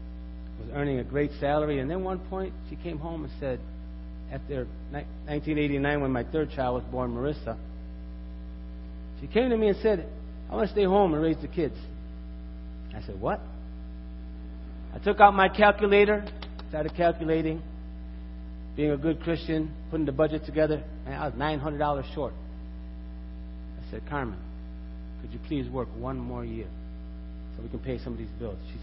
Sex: male